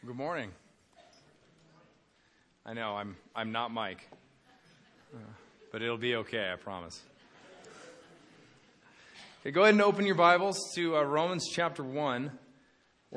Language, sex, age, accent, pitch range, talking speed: English, male, 30-49, American, 100-135 Hz, 130 wpm